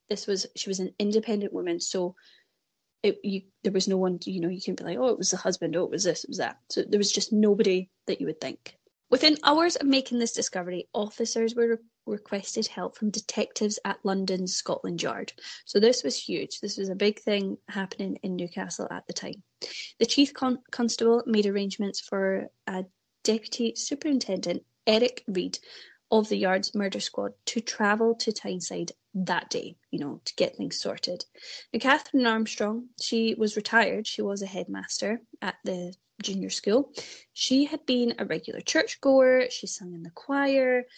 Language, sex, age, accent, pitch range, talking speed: English, female, 20-39, British, 195-245 Hz, 185 wpm